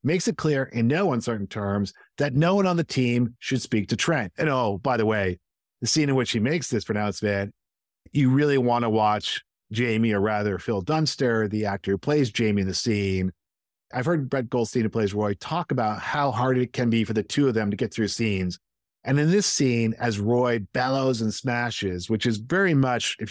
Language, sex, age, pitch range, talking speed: English, male, 50-69, 105-135 Hz, 220 wpm